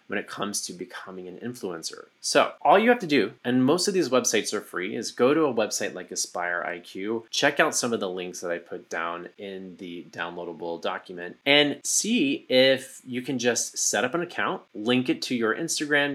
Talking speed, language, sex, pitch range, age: 210 wpm, English, male, 100-130 Hz, 20-39